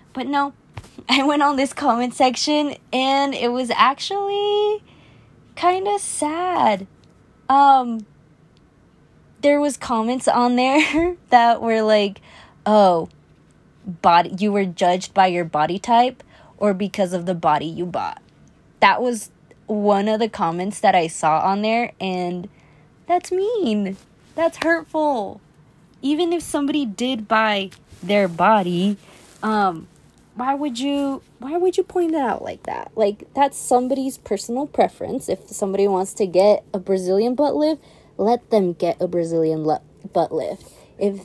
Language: English